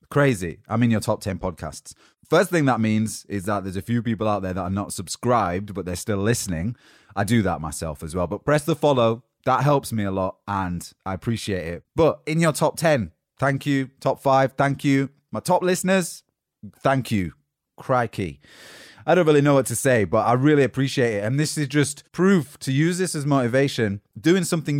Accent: British